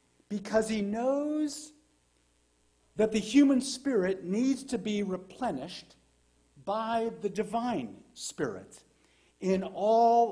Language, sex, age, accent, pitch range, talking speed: English, male, 50-69, American, 170-225 Hz, 100 wpm